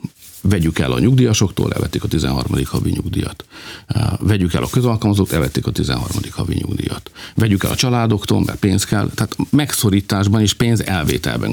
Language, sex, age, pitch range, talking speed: Hungarian, male, 50-69, 85-105 Hz, 155 wpm